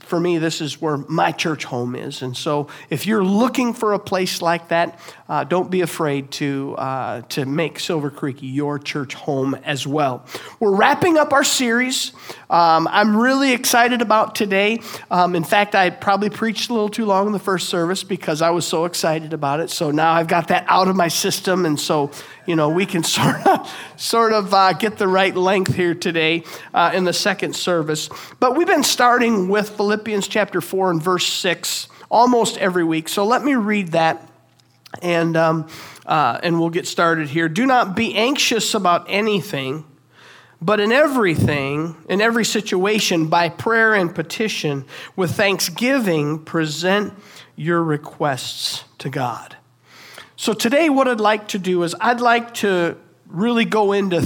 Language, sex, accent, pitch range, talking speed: English, male, American, 160-220 Hz, 180 wpm